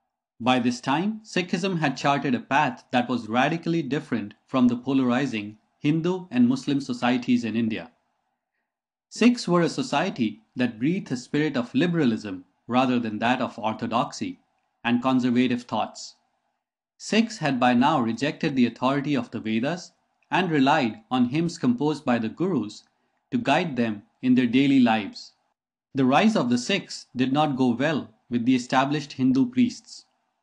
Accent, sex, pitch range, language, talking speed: Indian, male, 125-205 Hz, English, 155 wpm